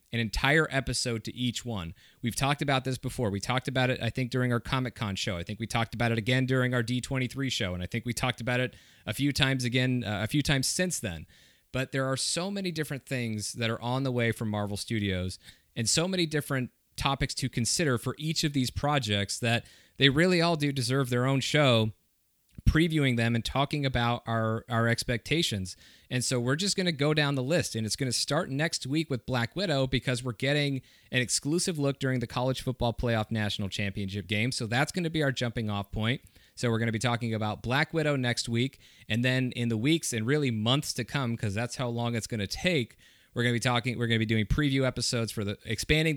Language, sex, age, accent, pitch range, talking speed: English, male, 30-49, American, 115-140 Hz, 235 wpm